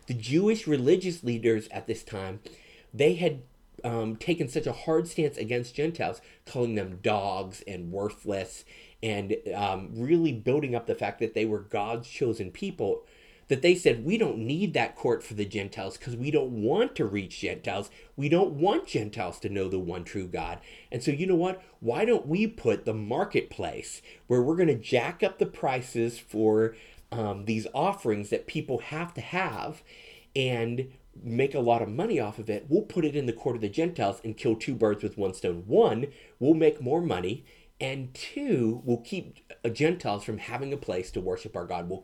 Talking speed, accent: 195 wpm, American